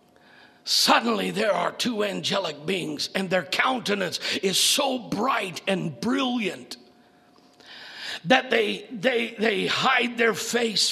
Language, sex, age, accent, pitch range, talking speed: English, male, 50-69, American, 215-250 Hz, 115 wpm